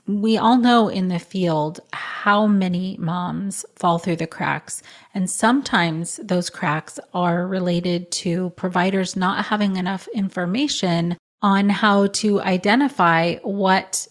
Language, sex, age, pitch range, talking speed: English, female, 30-49, 170-205 Hz, 130 wpm